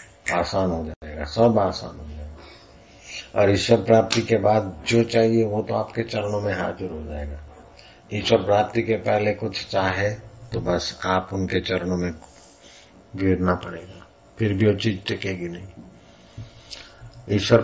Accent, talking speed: native, 145 wpm